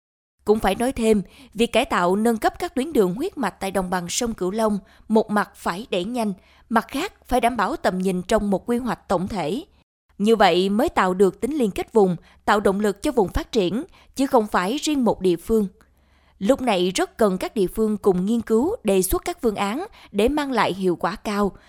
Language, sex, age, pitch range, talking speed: Vietnamese, female, 20-39, 195-250 Hz, 225 wpm